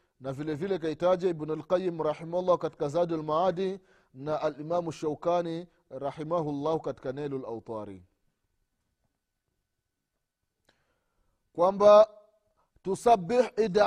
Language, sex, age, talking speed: Swahili, male, 30-49, 90 wpm